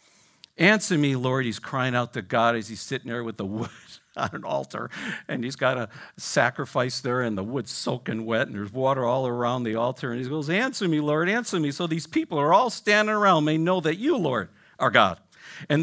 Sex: male